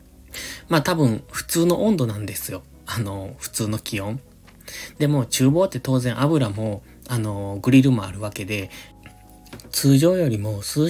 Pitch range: 110-145 Hz